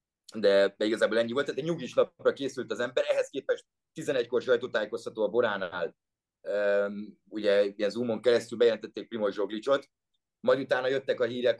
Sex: male